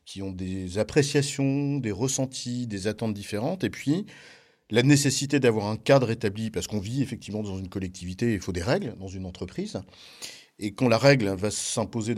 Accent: French